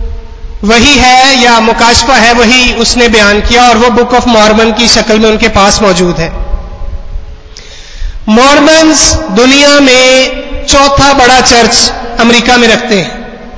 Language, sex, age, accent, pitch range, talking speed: Hindi, male, 30-49, native, 220-260 Hz, 135 wpm